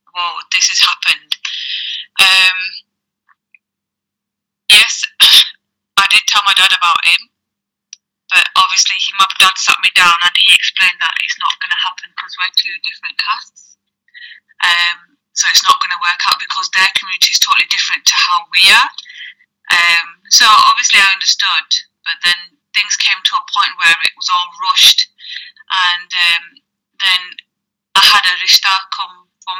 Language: English